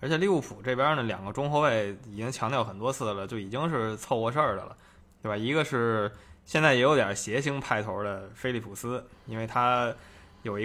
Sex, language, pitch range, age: male, Chinese, 105-125 Hz, 20-39